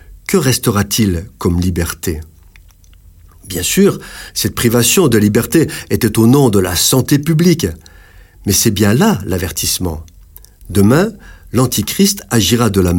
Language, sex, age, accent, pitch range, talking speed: French, male, 50-69, French, 90-125 Hz, 125 wpm